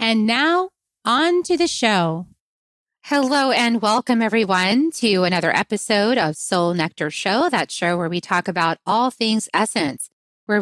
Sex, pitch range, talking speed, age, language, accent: female, 180-230 Hz, 155 wpm, 30-49, English, American